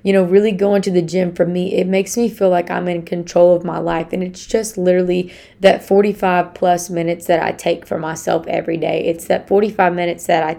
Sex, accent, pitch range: female, American, 170-195 Hz